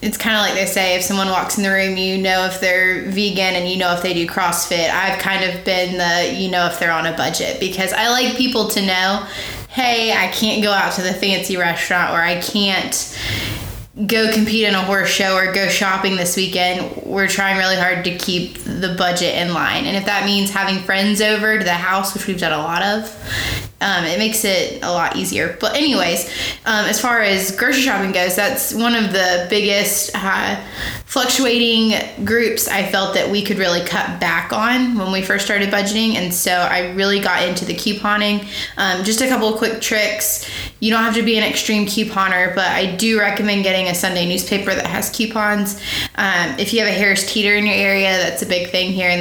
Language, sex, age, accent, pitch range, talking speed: English, female, 20-39, American, 185-210 Hz, 220 wpm